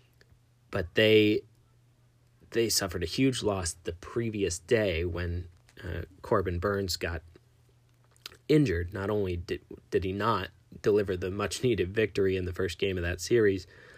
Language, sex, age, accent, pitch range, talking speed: English, male, 20-39, American, 90-115 Hz, 140 wpm